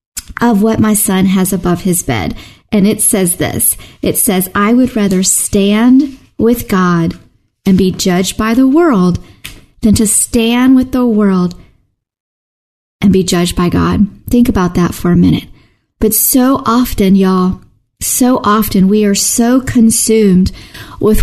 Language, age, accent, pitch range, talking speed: English, 40-59, American, 190-235 Hz, 155 wpm